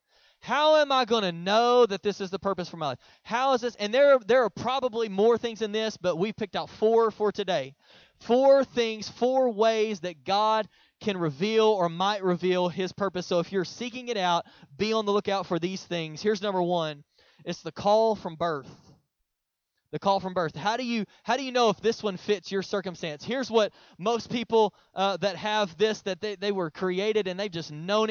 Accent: American